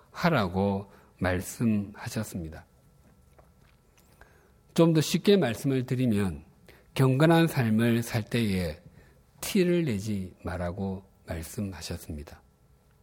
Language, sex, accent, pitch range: Korean, male, native, 95-135 Hz